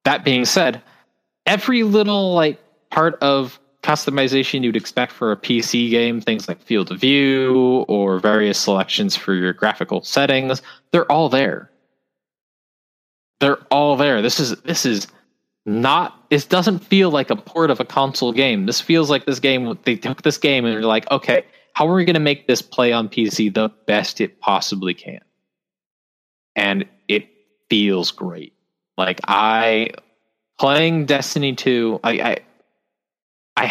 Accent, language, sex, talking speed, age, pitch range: American, English, male, 155 wpm, 20-39, 105-155 Hz